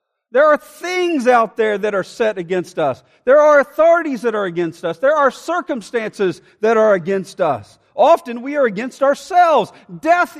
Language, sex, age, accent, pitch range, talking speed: English, male, 50-69, American, 205-285 Hz, 175 wpm